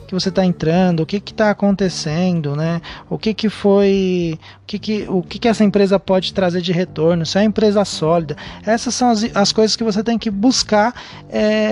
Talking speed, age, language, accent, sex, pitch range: 215 wpm, 20-39, Portuguese, Brazilian, male, 165-210 Hz